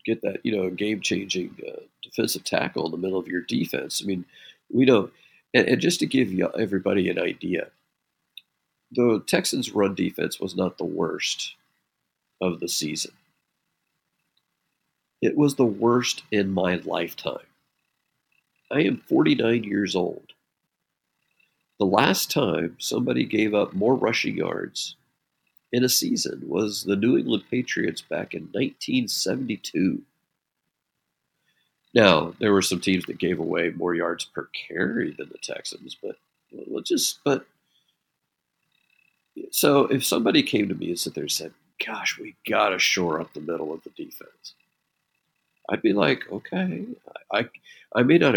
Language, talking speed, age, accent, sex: English, 145 wpm, 50-69, American, male